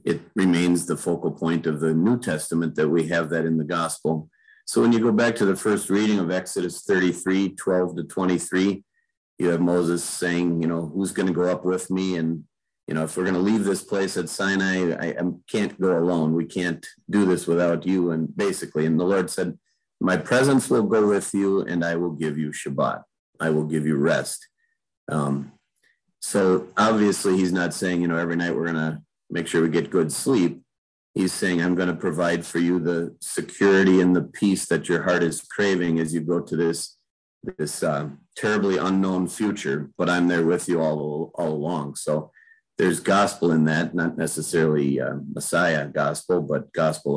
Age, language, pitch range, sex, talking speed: 40-59, English, 80-95 Hz, male, 200 wpm